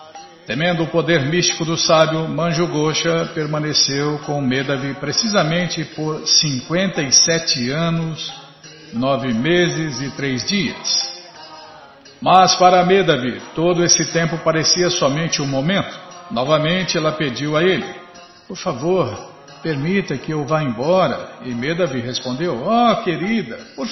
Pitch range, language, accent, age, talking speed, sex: 145-185 Hz, Portuguese, Brazilian, 50-69, 120 wpm, male